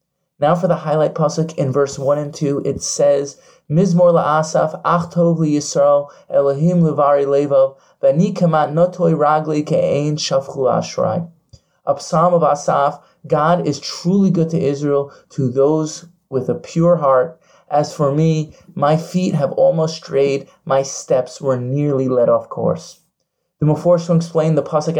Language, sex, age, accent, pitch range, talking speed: English, male, 20-39, American, 145-175 Hz, 150 wpm